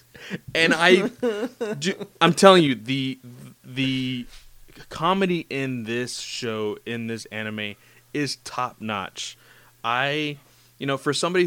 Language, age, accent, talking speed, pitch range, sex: English, 20-39, American, 120 wpm, 110-130 Hz, male